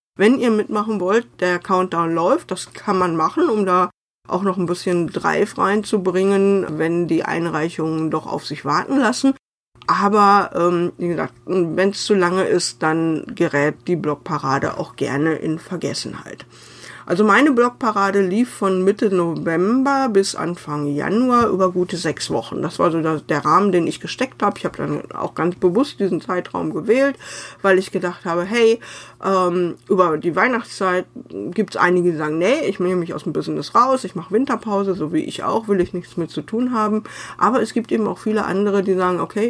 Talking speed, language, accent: 185 wpm, German, German